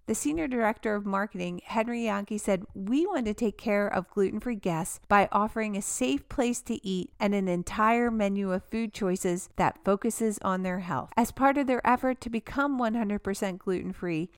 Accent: American